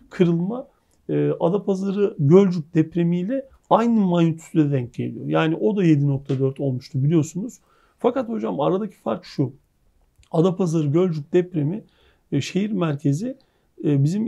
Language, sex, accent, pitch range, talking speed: Turkish, male, native, 145-195 Hz, 105 wpm